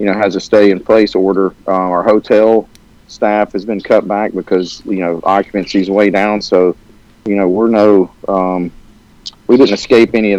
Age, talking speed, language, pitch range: 40-59, 195 wpm, English, 100-110 Hz